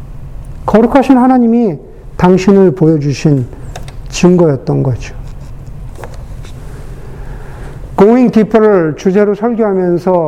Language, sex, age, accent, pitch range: Korean, male, 50-69, native, 135-200 Hz